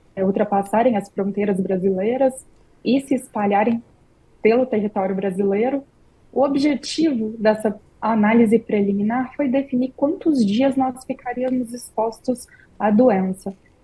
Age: 20-39